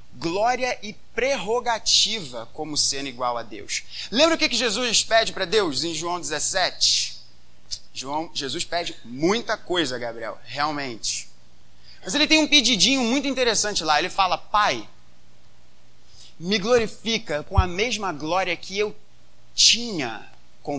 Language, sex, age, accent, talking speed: Portuguese, male, 20-39, Brazilian, 130 wpm